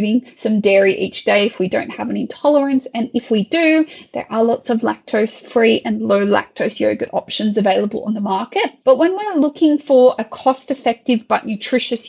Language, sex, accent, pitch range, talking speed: English, female, Australian, 210-260 Hz, 195 wpm